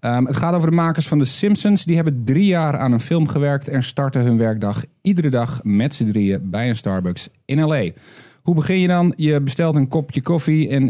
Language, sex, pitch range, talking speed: Dutch, male, 110-145 Hz, 225 wpm